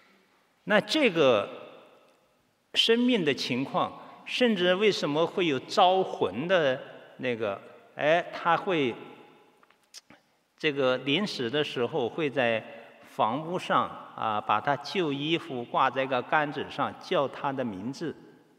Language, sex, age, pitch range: Chinese, male, 50-69, 120-165 Hz